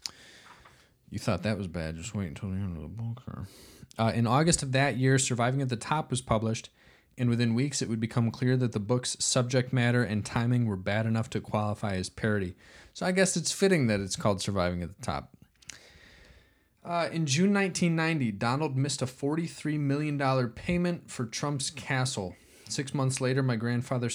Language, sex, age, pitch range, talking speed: English, male, 20-39, 105-130 Hz, 190 wpm